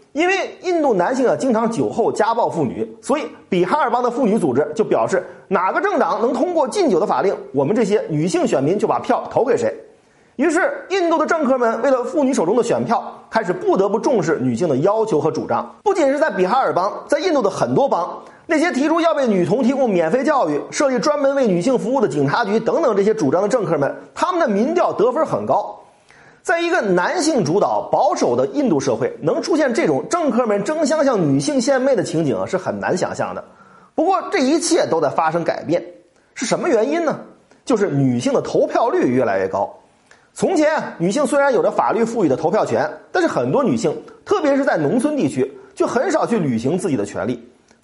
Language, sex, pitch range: Chinese, male, 210-315 Hz